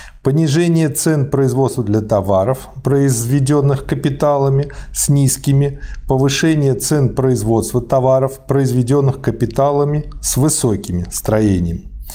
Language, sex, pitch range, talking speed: Russian, male, 115-145 Hz, 90 wpm